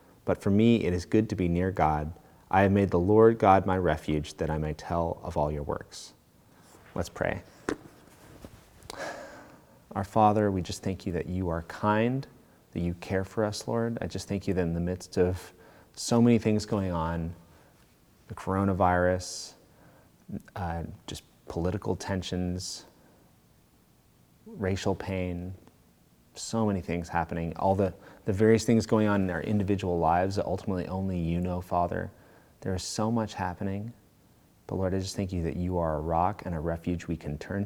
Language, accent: English, American